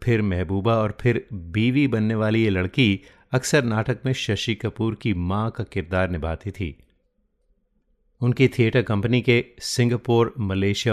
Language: Hindi